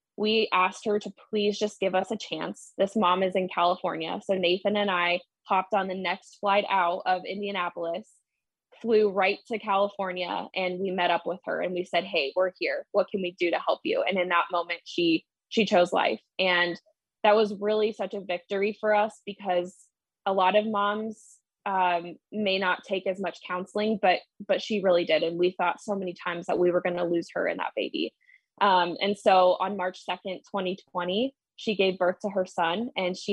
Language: English